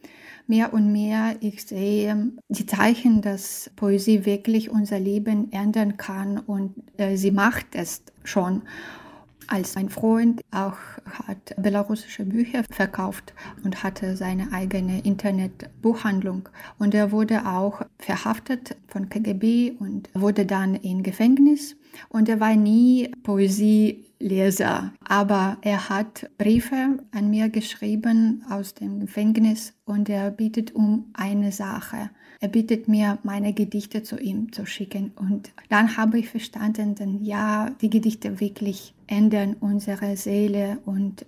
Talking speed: 130 wpm